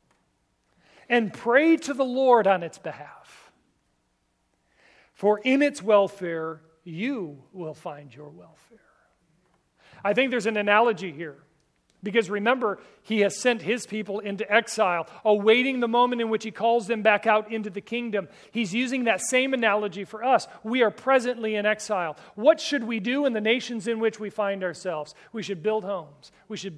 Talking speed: 170 wpm